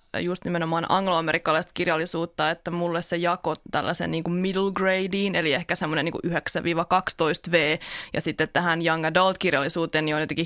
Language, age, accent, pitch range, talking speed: Finnish, 20-39, native, 160-180 Hz, 155 wpm